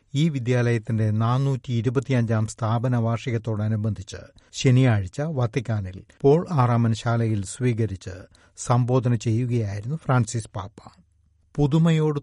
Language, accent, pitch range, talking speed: Malayalam, native, 105-130 Hz, 80 wpm